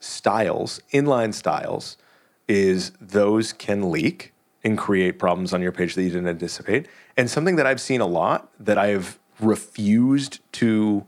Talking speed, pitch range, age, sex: 155 wpm, 100-140 Hz, 30-49, male